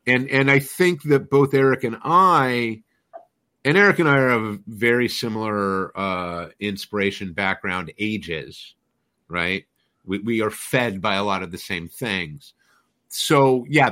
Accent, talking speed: American, 150 wpm